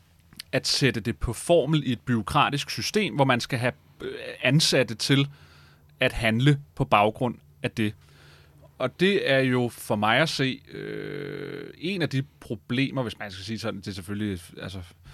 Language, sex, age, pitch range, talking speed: Danish, male, 30-49, 105-135 Hz, 165 wpm